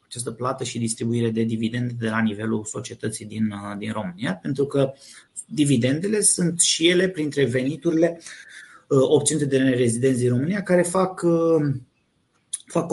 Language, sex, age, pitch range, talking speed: Romanian, male, 30-49, 120-170 Hz, 135 wpm